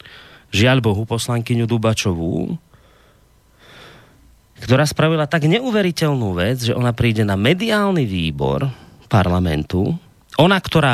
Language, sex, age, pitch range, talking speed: Slovak, male, 30-49, 110-160 Hz, 100 wpm